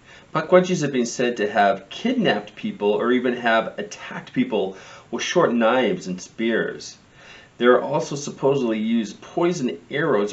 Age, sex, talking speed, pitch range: 40-59, male, 145 wpm, 110-160 Hz